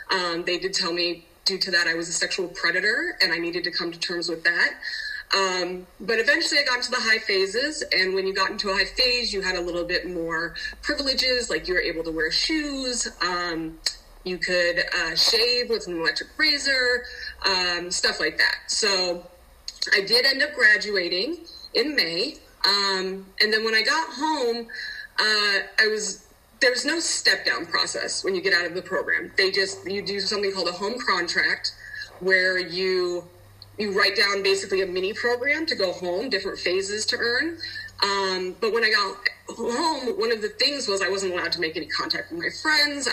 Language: English